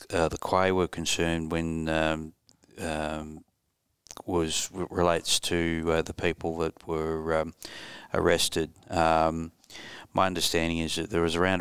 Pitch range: 80-90 Hz